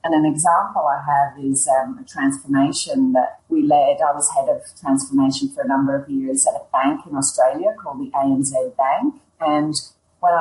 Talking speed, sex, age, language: 190 wpm, female, 40-59, English